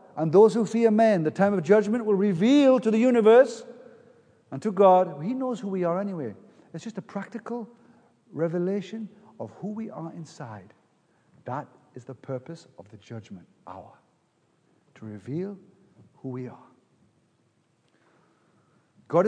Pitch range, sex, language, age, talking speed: 160-235 Hz, male, English, 50-69, 145 wpm